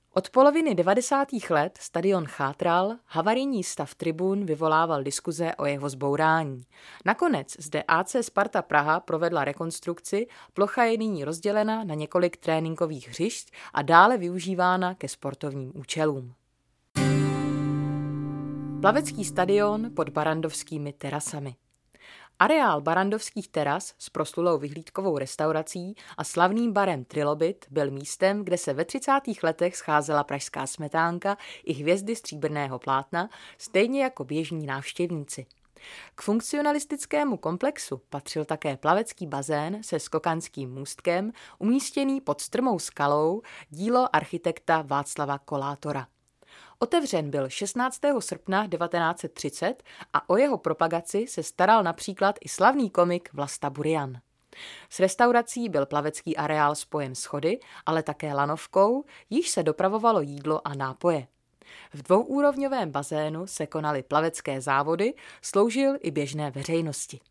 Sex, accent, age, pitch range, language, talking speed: female, native, 30-49, 145-200 Hz, Czech, 115 wpm